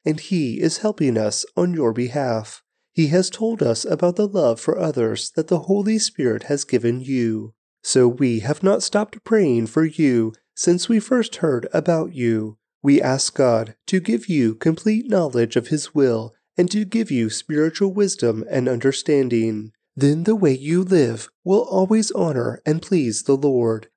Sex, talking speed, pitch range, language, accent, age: male, 175 wpm, 115-185 Hz, English, American, 30-49